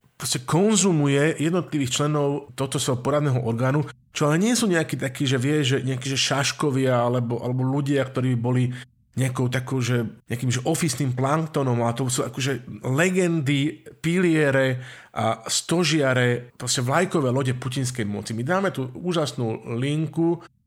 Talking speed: 150 wpm